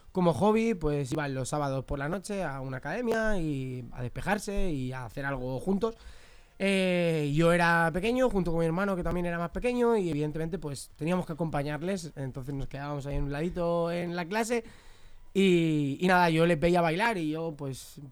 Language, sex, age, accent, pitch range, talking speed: Spanish, male, 20-39, Spanish, 145-195 Hz, 200 wpm